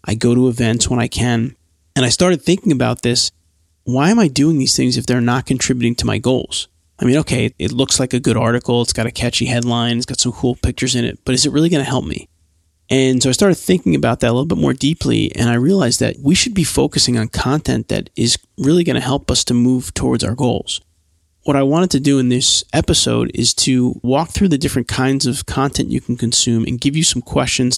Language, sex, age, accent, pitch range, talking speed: English, male, 30-49, American, 115-135 Hz, 245 wpm